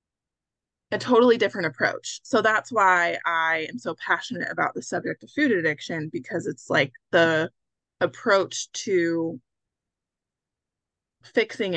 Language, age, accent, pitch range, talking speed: English, 20-39, American, 180-255 Hz, 120 wpm